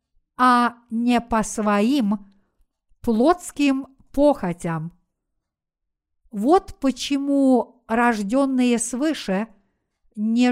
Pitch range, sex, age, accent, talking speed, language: 225-270 Hz, female, 50-69, native, 65 wpm, Russian